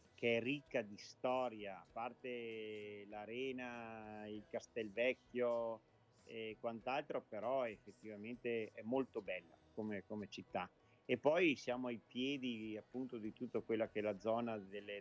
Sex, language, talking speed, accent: male, Italian, 135 wpm, native